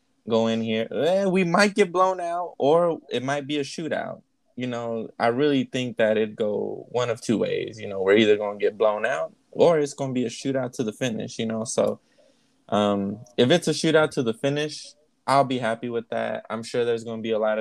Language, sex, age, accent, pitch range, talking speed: English, male, 20-39, American, 110-135 Hz, 240 wpm